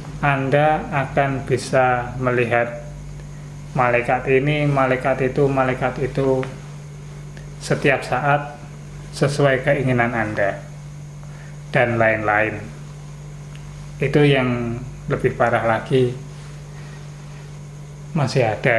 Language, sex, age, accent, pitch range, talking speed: Indonesian, male, 20-39, native, 125-145 Hz, 75 wpm